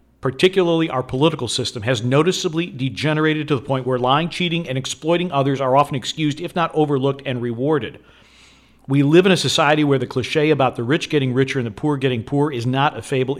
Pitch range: 125-150 Hz